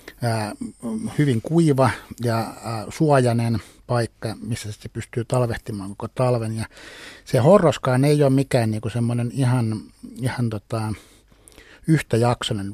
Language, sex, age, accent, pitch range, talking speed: Finnish, male, 60-79, native, 110-130 Hz, 110 wpm